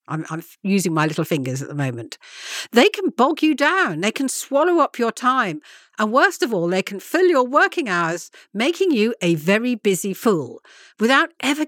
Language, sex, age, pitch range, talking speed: English, female, 50-69, 190-290 Hz, 195 wpm